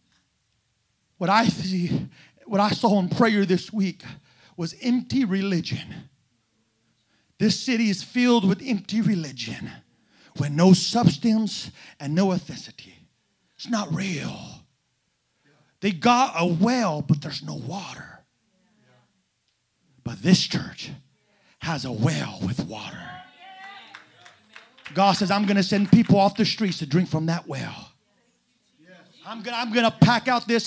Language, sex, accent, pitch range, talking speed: English, male, American, 195-325 Hz, 130 wpm